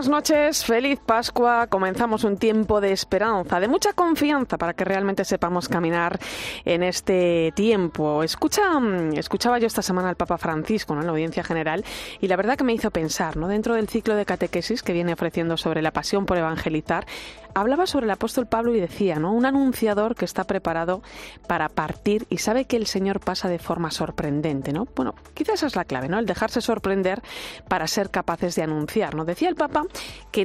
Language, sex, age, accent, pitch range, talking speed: Spanish, female, 30-49, Spanish, 170-225 Hz, 195 wpm